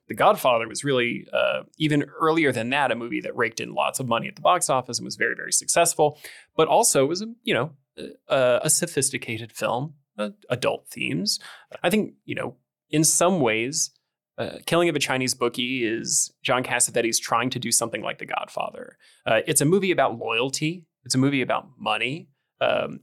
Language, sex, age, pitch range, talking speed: English, male, 20-39, 120-155 Hz, 195 wpm